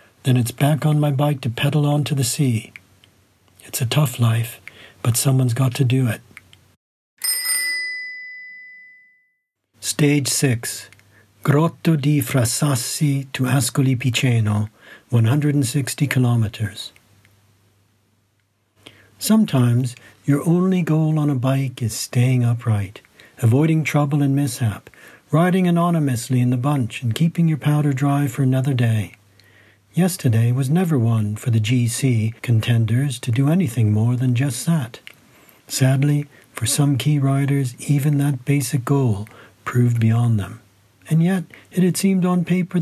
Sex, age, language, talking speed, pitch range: male, 60-79, English, 130 wpm, 115-150 Hz